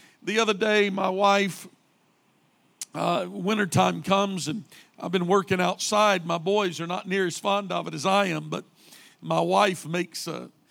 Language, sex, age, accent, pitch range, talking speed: English, male, 50-69, American, 165-220 Hz, 165 wpm